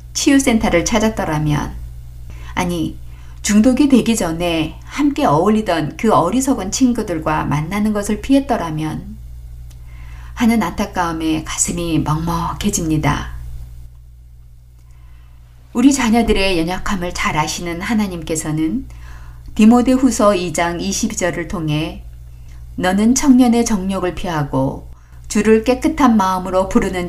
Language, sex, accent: Korean, female, native